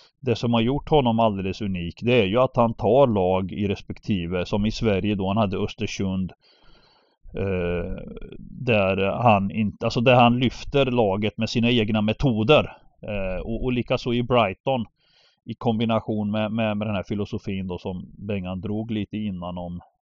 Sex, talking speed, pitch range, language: male, 165 wpm, 95-125 Hz, Swedish